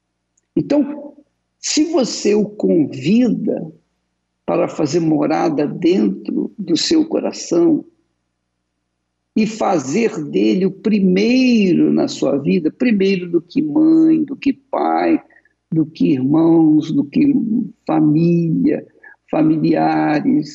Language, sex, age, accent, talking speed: Portuguese, male, 60-79, Brazilian, 100 wpm